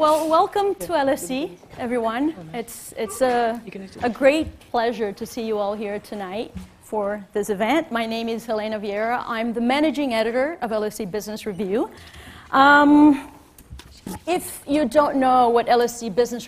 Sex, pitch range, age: female, 205-245 Hz, 30-49